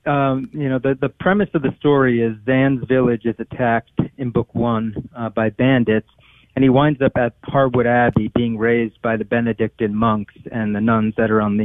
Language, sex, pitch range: English, male, 115-150 Hz